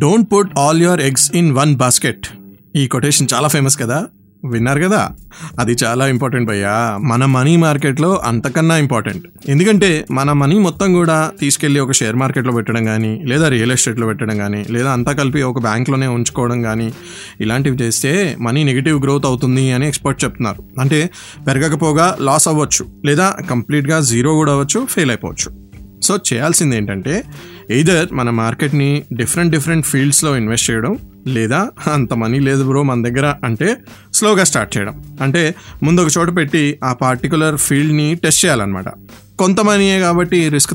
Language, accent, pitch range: Telugu, native, 120-155 Hz